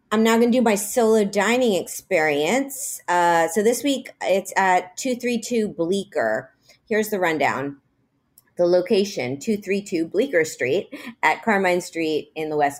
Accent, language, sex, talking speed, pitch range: American, English, female, 145 wpm, 150-200 Hz